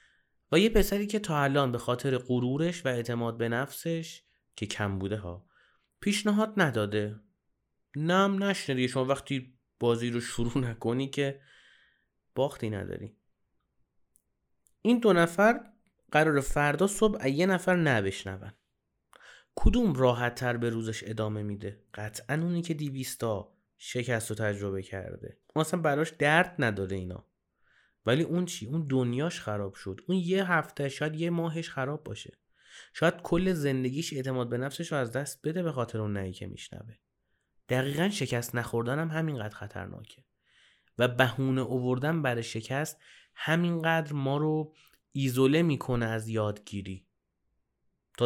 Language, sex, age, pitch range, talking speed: Persian, male, 30-49, 115-160 Hz, 135 wpm